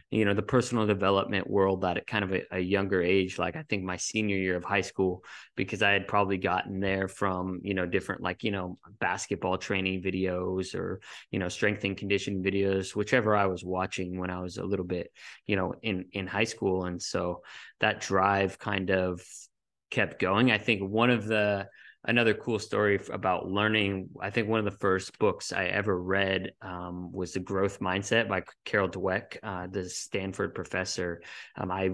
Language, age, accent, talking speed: English, 20-39, American, 195 wpm